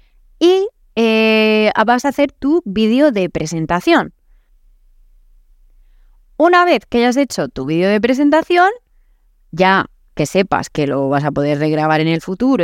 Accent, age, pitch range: Spanish, 20-39, 185-280 Hz